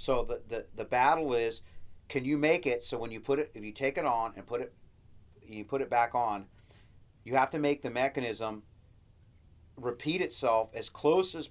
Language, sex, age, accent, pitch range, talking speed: English, male, 40-59, American, 105-135 Hz, 205 wpm